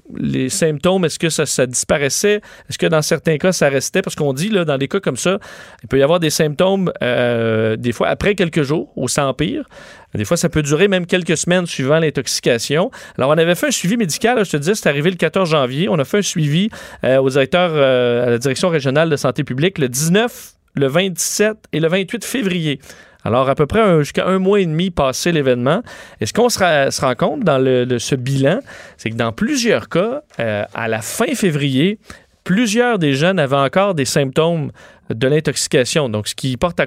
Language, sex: French, male